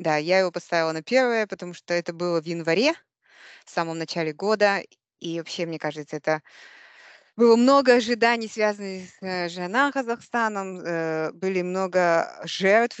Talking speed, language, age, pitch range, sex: 145 wpm, Russian, 20-39, 160-195 Hz, female